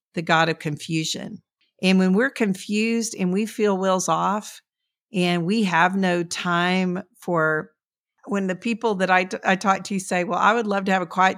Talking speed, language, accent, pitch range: 195 wpm, English, American, 180-230 Hz